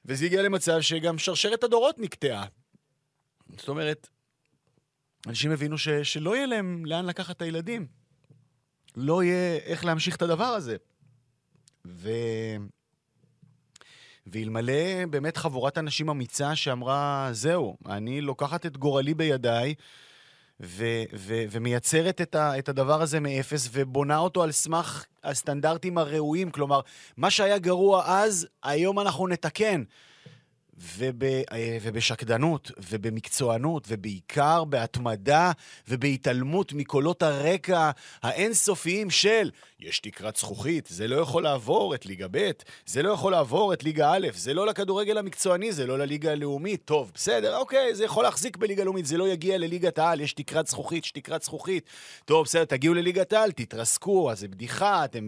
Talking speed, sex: 135 wpm, male